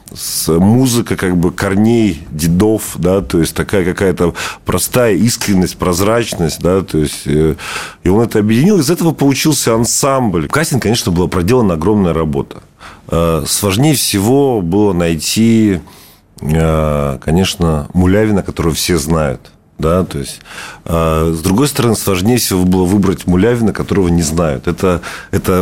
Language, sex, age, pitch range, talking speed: Russian, male, 40-59, 85-115 Hz, 135 wpm